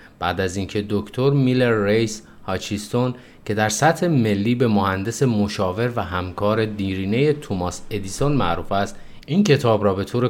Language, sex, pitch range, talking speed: Persian, male, 95-115 Hz, 150 wpm